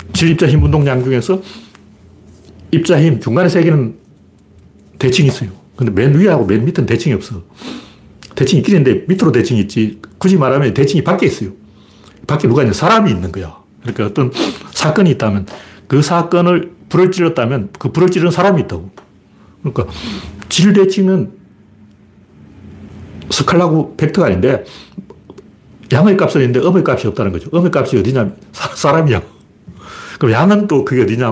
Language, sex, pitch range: Korean, male, 105-175 Hz